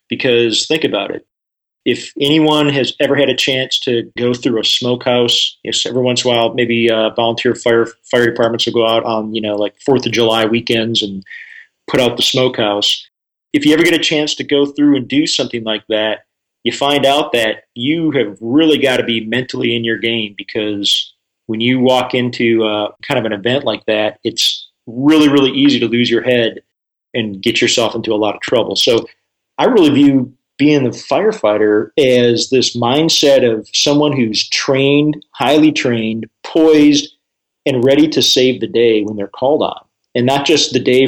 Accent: American